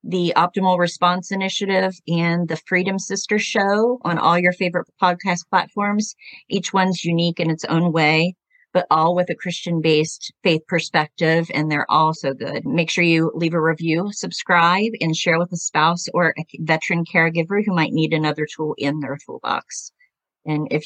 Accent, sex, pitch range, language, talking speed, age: American, female, 155-180 Hz, English, 175 wpm, 40-59